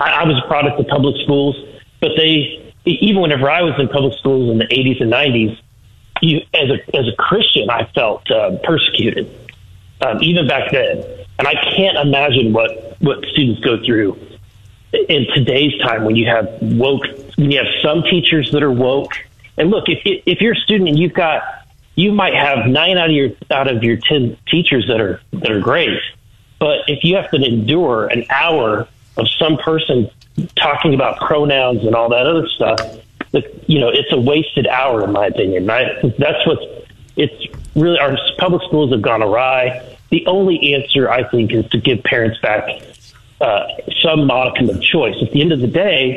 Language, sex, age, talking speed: English, male, 40-59, 190 wpm